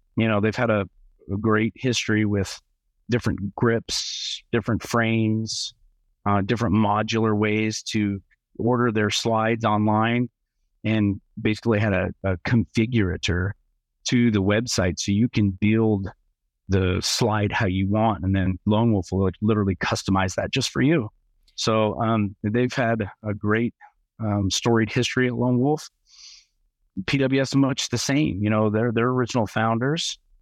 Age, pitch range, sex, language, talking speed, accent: 40-59, 100-115 Hz, male, English, 145 wpm, American